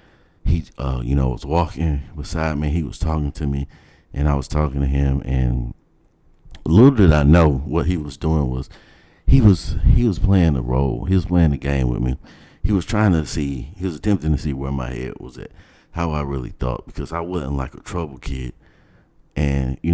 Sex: male